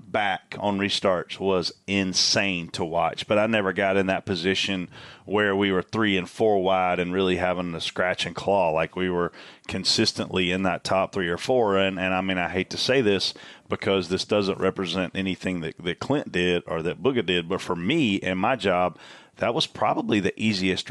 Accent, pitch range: American, 90-105 Hz